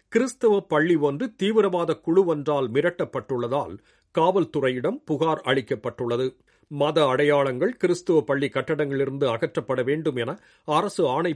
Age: 50-69